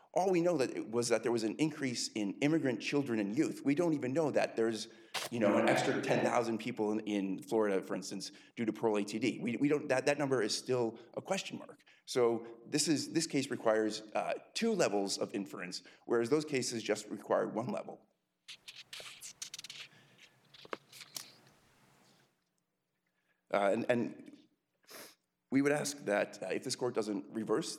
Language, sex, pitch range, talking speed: English, male, 100-130 Hz, 170 wpm